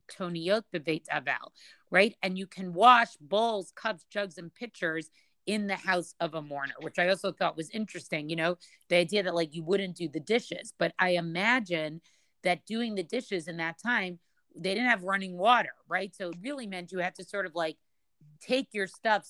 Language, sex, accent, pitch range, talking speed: English, female, American, 165-205 Hz, 205 wpm